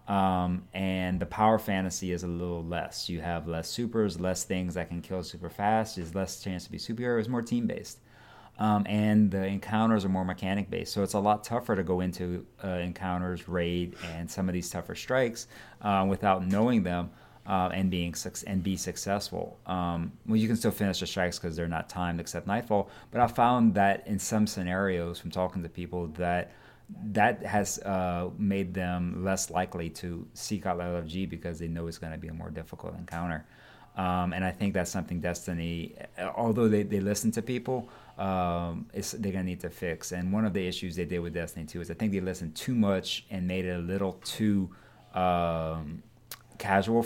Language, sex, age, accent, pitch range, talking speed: English, male, 30-49, American, 90-105 Hz, 200 wpm